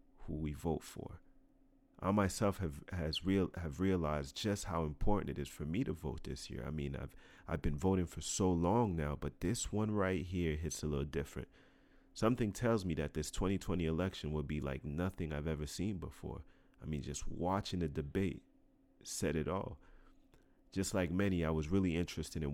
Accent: American